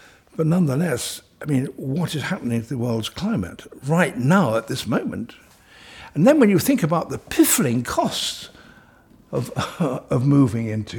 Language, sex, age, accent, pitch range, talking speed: English, male, 60-79, British, 110-175 Hz, 165 wpm